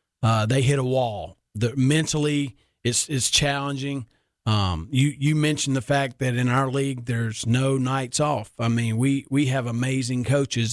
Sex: male